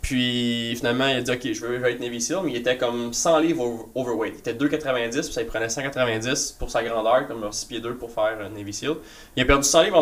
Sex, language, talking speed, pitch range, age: male, French, 270 wpm, 130-175 Hz, 20-39